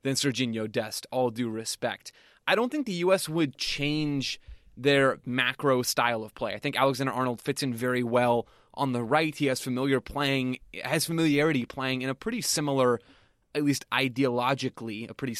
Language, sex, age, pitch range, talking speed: English, male, 20-39, 115-140 Hz, 170 wpm